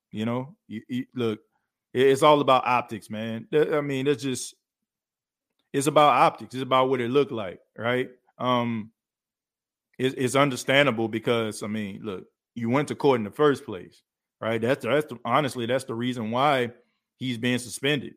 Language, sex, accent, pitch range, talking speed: English, male, American, 115-135 Hz, 175 wpm